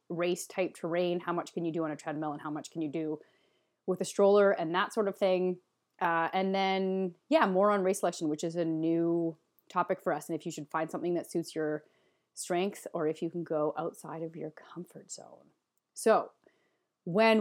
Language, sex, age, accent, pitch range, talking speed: English, female, 30-49, American, 175-220 Hz, 215 wpm